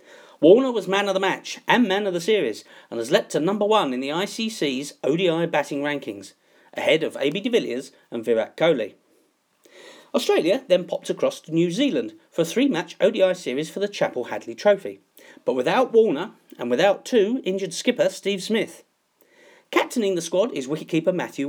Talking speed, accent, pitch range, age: 180 wpm, British, 165-275 Hz, 40-59